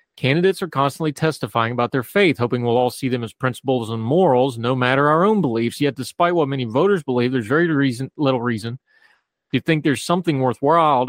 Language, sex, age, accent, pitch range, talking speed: English, male, 30-49, American, 115-140 Hz, 195 wpm